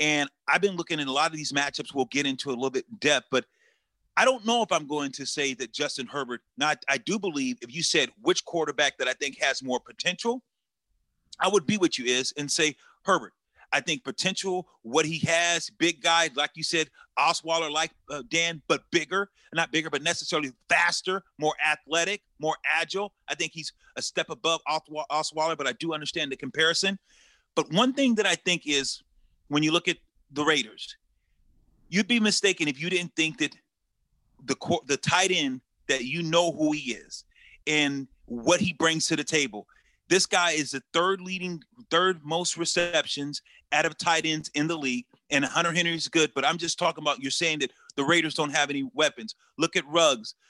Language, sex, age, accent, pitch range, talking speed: English, male, 40-59, American, 145-175 Hz, 200 wpm